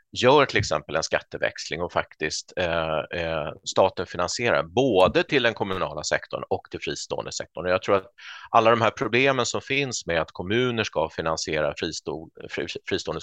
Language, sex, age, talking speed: Swedish, male, 30-49, 170 wpm